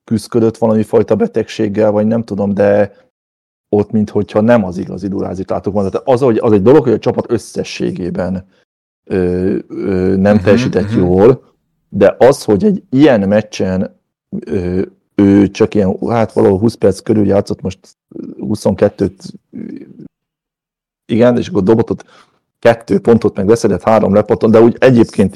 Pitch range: 95-110 Hz